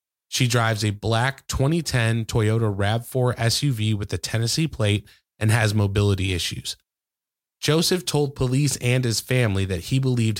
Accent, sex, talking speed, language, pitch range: American, male, 145 wpm, English, 105-135 Hz